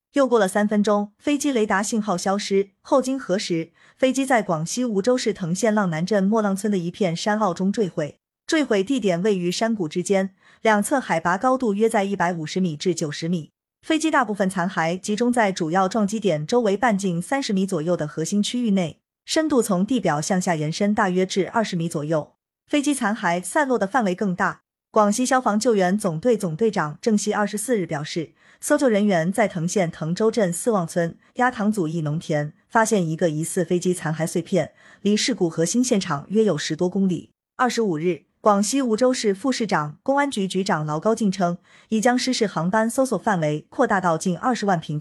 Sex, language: female, Chinese